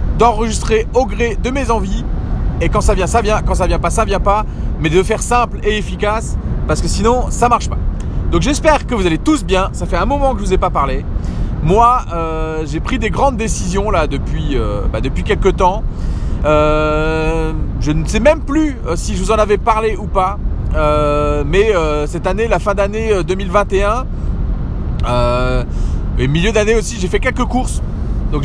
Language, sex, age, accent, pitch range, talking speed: French, male, 30-49, French, 145-210 Hz, 200 wpm